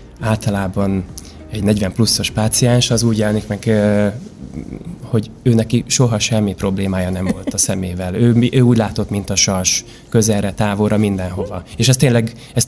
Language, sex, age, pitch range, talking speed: Hungarian, male, 20-39, 100-115 Hz, 150 wpm